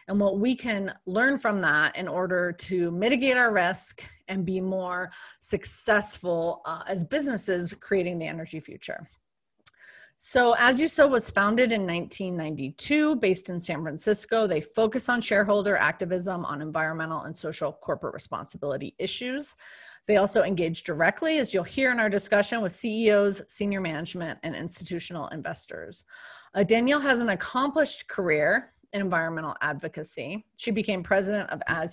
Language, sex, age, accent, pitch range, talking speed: English, female, 30-49, American, 175-220 Hz, 145 wpm